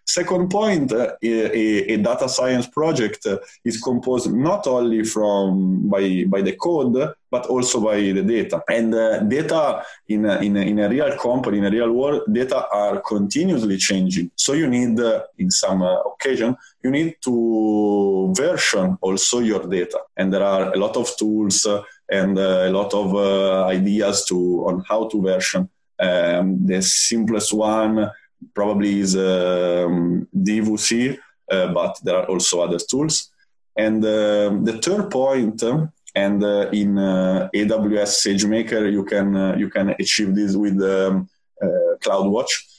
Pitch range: 95-120 Hz